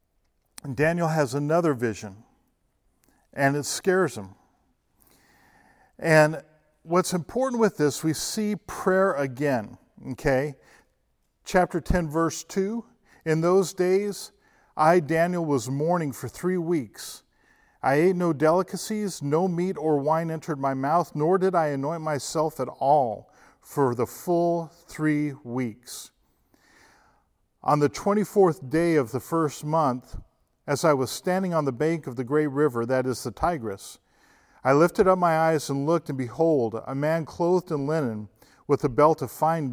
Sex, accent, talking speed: male, American, 150 wpm